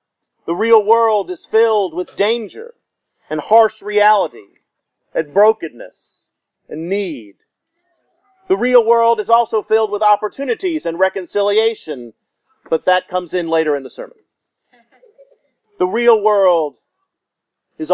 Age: 40-59